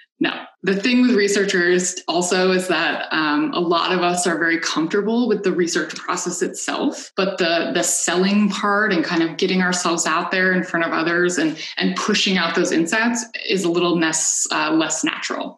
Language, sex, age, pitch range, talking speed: English, female, 20-39, 175-250 Hz, 195 wpm